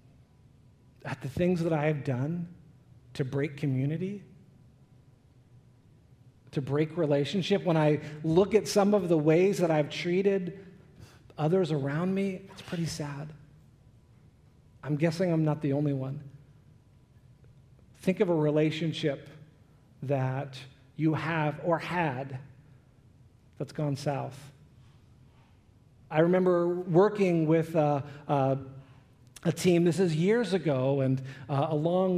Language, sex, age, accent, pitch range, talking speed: English, male, 40-59, American, 135-180 Hz, 120 wpm